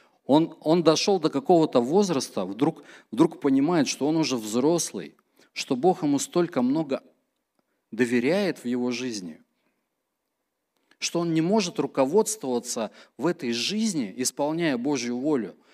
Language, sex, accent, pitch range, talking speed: Russian, male, native, 120-170 Hz, 125 wpm